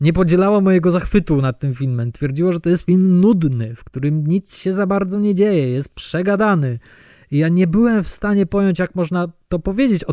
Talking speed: 205 wpm